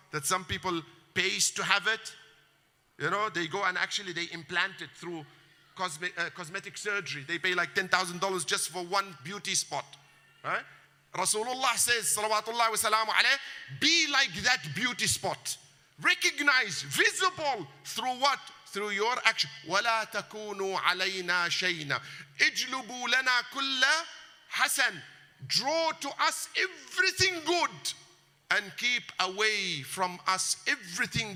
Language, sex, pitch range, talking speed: English, male, 180-240 Hz, 130 wpm